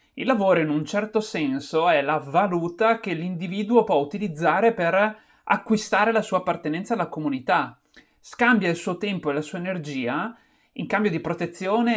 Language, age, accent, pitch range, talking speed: Italian, 30-49, native, 150-215 Hz, 160 wpm